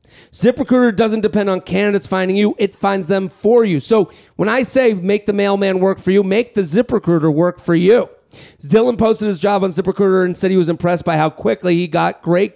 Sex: male